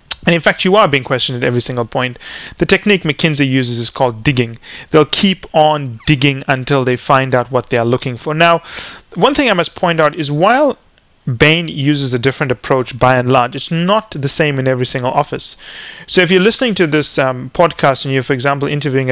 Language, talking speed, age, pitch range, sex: English, 215 wpm, 30-49, 130-155 Hz, male